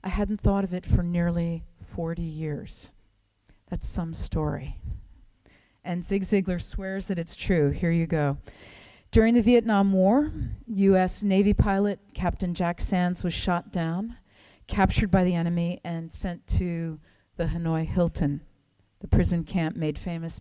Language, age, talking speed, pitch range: English, 40-59, 145 wpm, 145-205 Hz